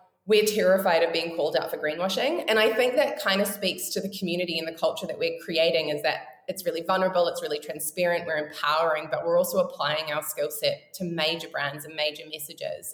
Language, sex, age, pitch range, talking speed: English, female, 20-39, 160-210 Hz, 220 wpm